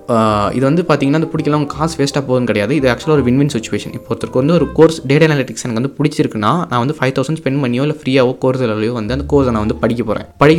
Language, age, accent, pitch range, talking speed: Tamil, 20-39, native, 115-140 Hz, 240 wpm